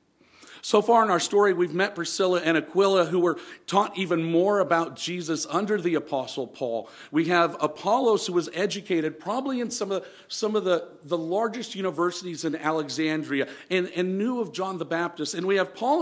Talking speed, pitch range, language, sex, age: 190 wpm, 150-195 Hz, English, male, 50-69